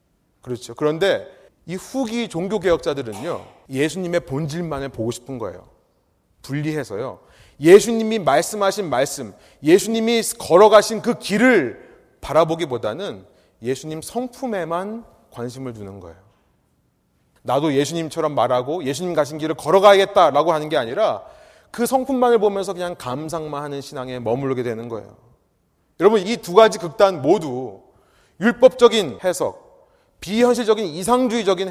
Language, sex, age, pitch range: Korean, male, 30-49, 150-235 Hz